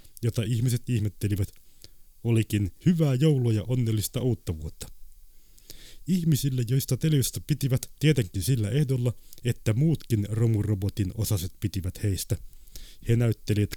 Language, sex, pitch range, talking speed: Finnish, male, 95-120 Hz, 110 wpm